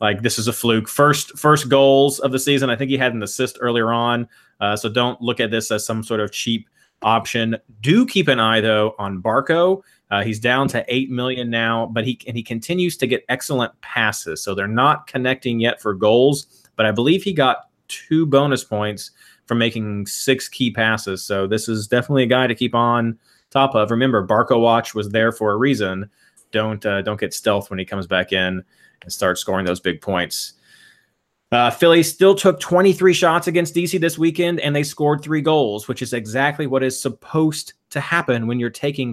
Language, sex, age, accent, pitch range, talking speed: English, male, 30-49, American, 110-135 Hz, 205 wpm